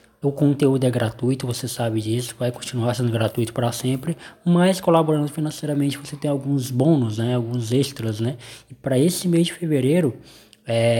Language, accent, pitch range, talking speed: Portuguese, Brazilian, 115-140 Hz, 165 wpm